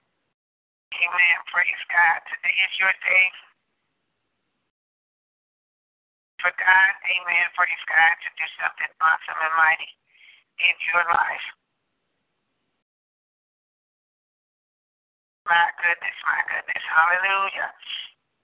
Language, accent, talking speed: English, American, 80 wpm